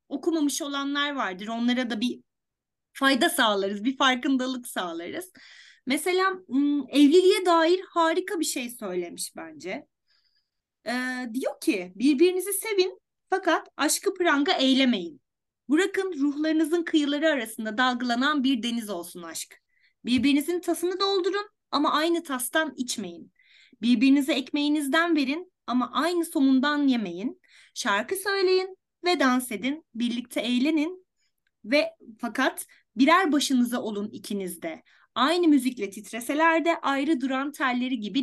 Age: 30-49